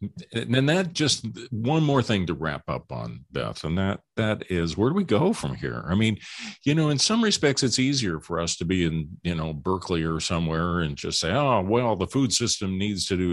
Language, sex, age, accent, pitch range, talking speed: English, male, 50-69, American, 85-115 Hz, 230 wpm